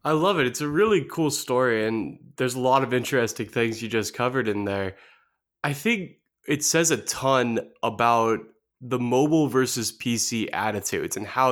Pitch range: 115-150 Hz